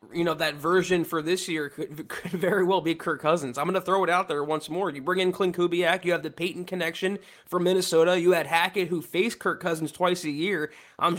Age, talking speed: 20-39, 245 wpm